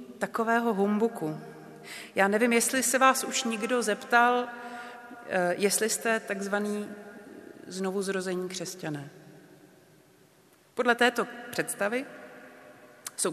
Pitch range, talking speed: 180-225 Hz, 85 wpm